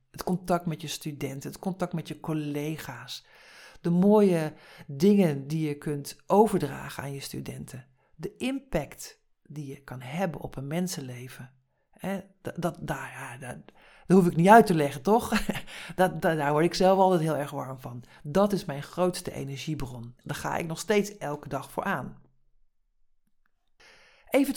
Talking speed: 150 wpm